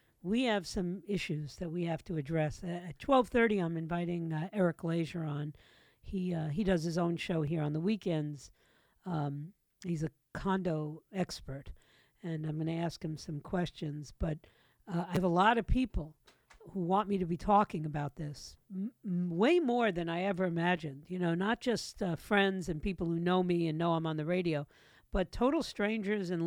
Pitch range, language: 155-195 Hz, English